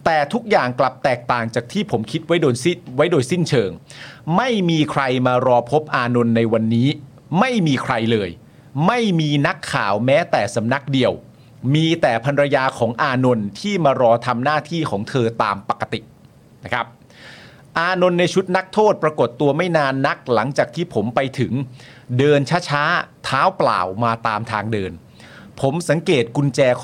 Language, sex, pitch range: Thai, male, 125-155 Hz